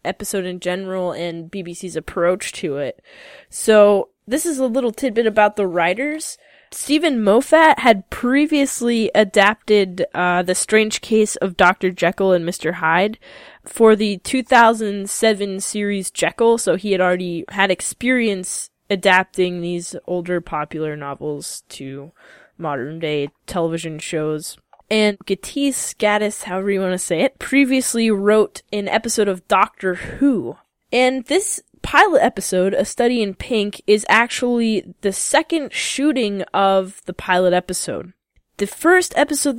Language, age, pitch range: English, 10-29, 180-230 Hz